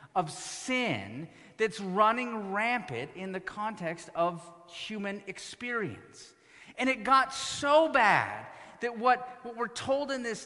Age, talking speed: 30-49, 130 wpm